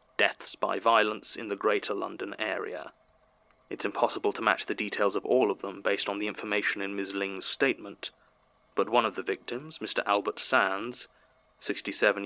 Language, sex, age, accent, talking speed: English, male, 20-39, British, 170 wpm